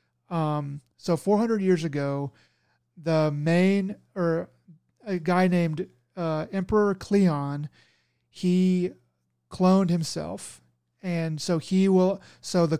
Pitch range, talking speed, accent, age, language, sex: 145-175 Hz, 110 wpm, American, 30-49, English, male